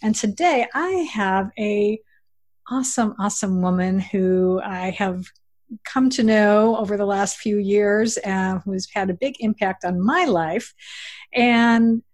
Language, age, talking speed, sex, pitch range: English, 50-69, 145 wpm, female, 195-245 Hz